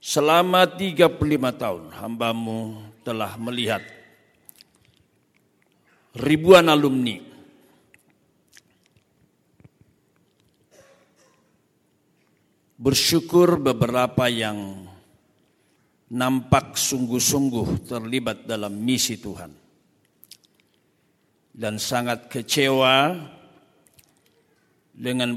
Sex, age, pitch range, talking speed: male, 50-69, 105-135 Hz, 50 wpm